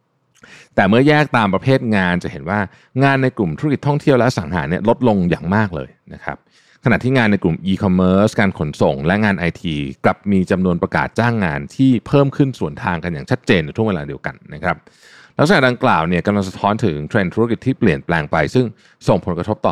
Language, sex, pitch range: Thai, male, 85-125 Hz